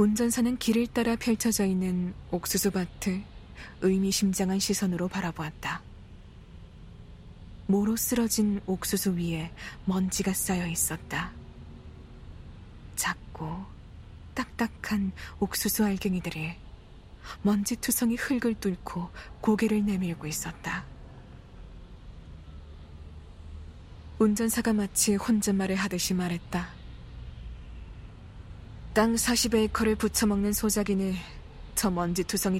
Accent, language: native, Korean